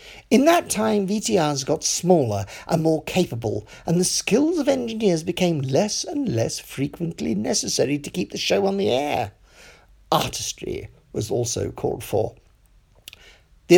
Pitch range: 145-225 Hz